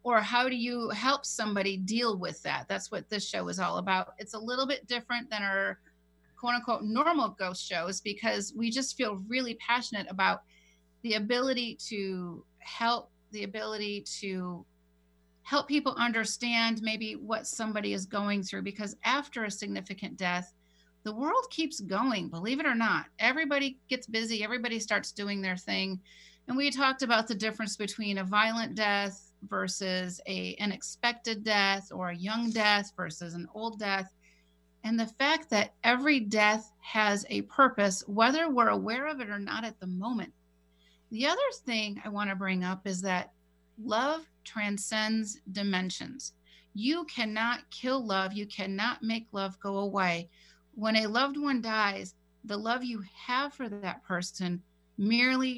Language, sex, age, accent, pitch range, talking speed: English, female, 40-59, American, 190-235 Hz, 160 wpm